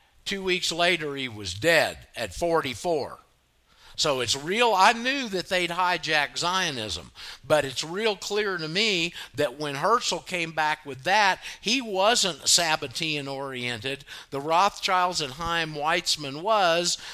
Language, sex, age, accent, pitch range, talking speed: English, male, 50-69, American, 135-180 Hz, 140 wpm